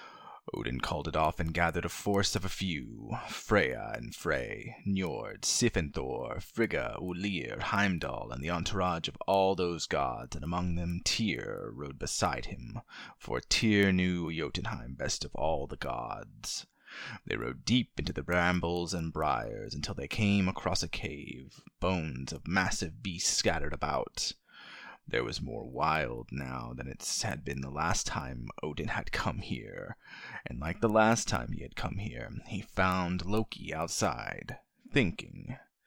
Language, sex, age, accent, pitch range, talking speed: English, male, 30-49, American, 80-95 Hz, 155 wpm